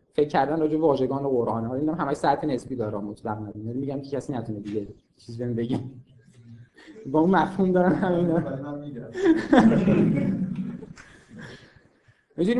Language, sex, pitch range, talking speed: Persian, male, 135-195 Hz, 150 wpm